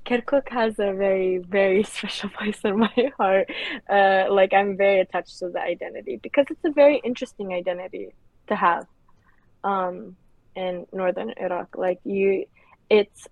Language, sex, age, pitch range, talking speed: English, female, 20-39, 185-220 Hz, 150 wpm